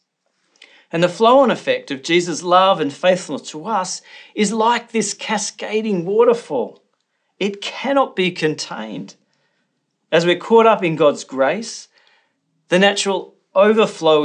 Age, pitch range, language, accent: 40-59, 155-215 Hz, English, Australian